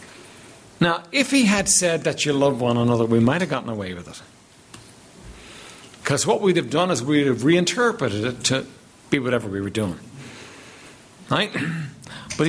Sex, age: male, 60-79